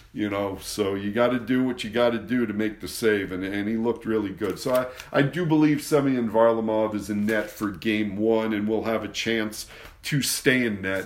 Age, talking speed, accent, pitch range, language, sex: 50-69, 240 wpm, American, 100-115 Hz, English, male